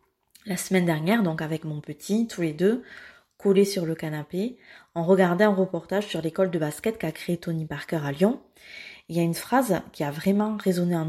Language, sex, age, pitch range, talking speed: French, female, 20-39, 170-210 Hz, 210 wpm